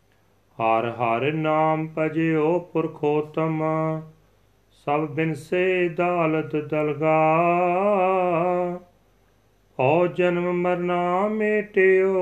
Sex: male